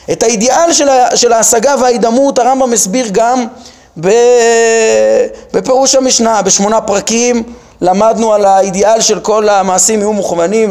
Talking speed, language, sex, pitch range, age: 110 wpm, Hebrew, male, 200-270 Hz, 30-49